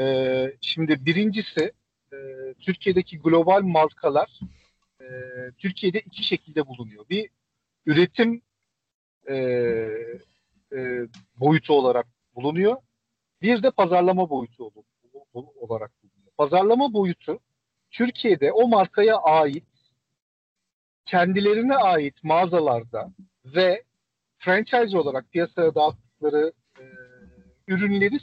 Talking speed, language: 75 wpm, Turkish